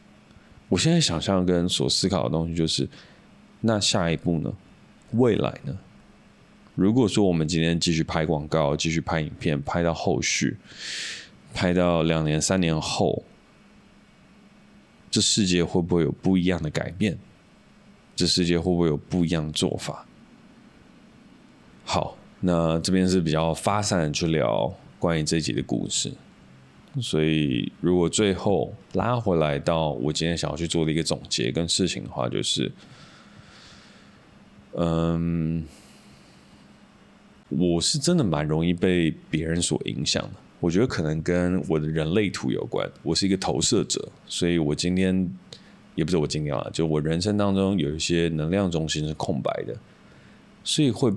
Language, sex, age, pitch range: Chinese, male, 20-39, 80-95 Hz